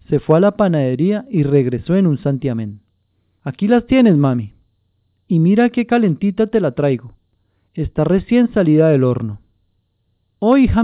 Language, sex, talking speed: French, male, 155 wpm